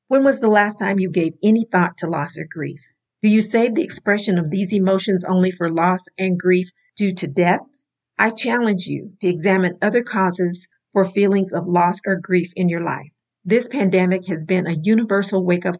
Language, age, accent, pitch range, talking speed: English, 50-69, American, 175-210 Hz, 200 wpm